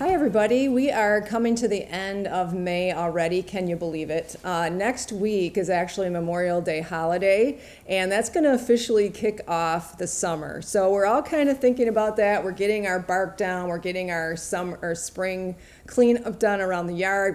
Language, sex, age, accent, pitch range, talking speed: English, female, 40-59, American, 165-210 Hz, 195 wpm